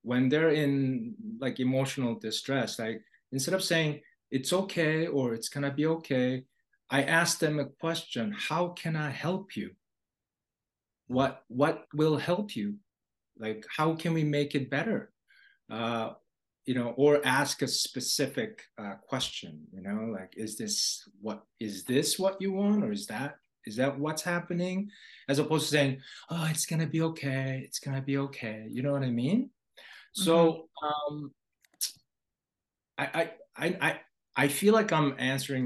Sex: male